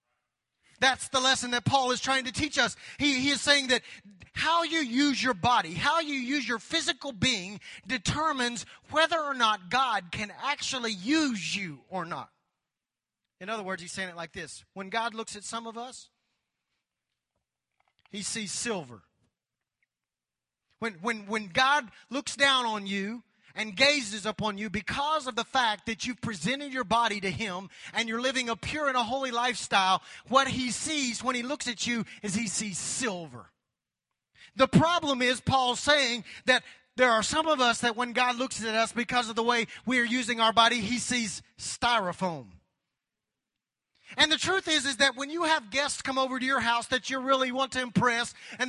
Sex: male